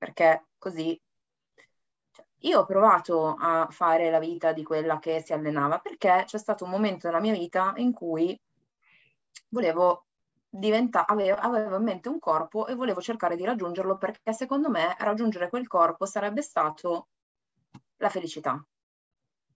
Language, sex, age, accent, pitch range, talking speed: Italian, female, 20-39, native, 160-220 Hz, 140 wpm